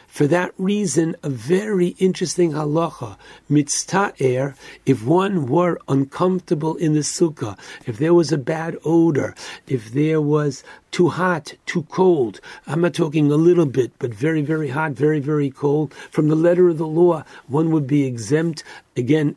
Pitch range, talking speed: 135-170 Hz, 160 wpm